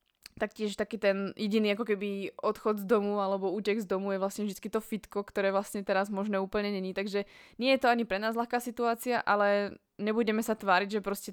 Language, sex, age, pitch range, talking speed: Slovak, female, 20-39, 180-205 Hz, 205 wpm